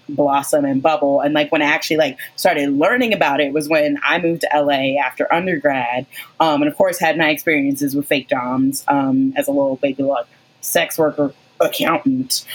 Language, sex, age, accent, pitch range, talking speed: English, female, 20-39, American, 140-200 Hz, 190 wpm